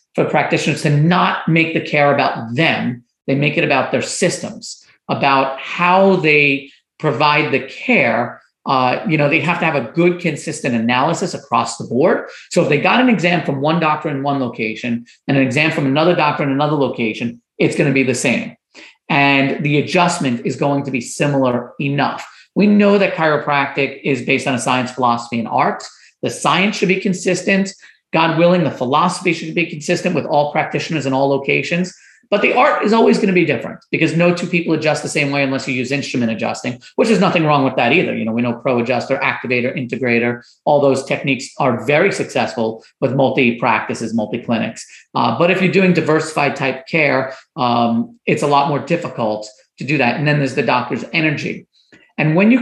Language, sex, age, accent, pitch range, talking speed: English, male, 40-59, American, 130-170 Hz, 195 wpm